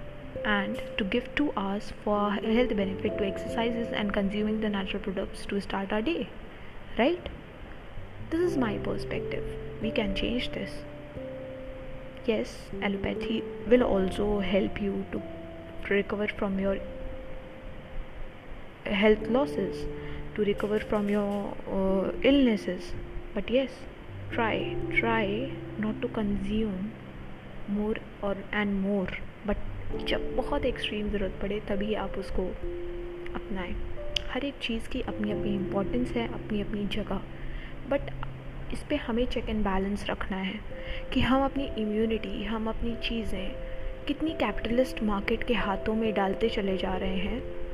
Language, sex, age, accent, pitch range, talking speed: Hindi, female, 20-39, native, 175-225 Hz, 130 wpm